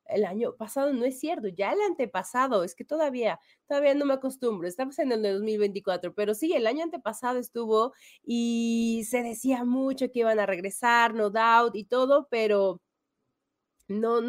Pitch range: 200-265 Hz